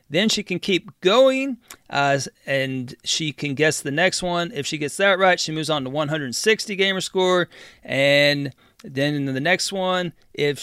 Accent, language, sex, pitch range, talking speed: American, English, male, 135-185 Hz, 180 wpm